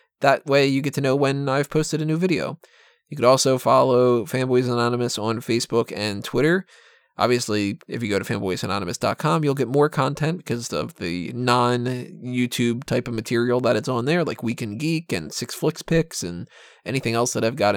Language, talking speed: English, 190 wpm